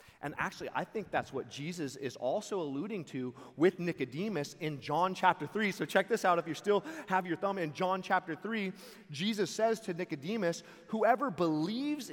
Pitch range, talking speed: 125-175 Hz, 185 wpm